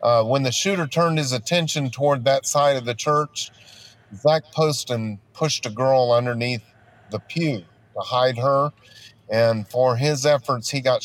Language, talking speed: English, 165 wpm